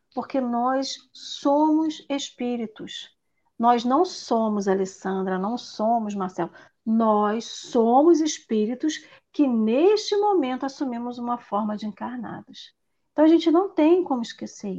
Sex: female